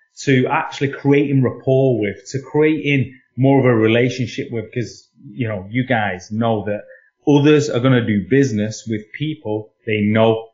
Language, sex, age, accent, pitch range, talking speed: English, male, 30-49, British, 115-145 Hz, 165 wpm